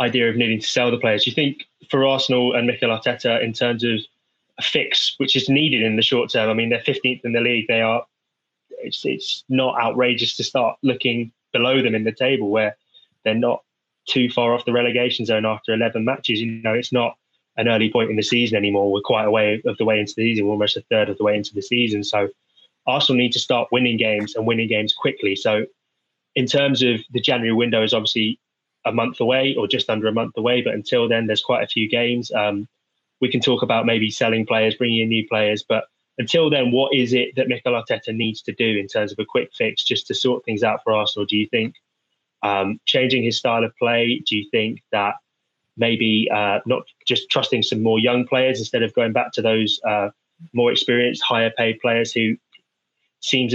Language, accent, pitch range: English, British, 110-125 Hz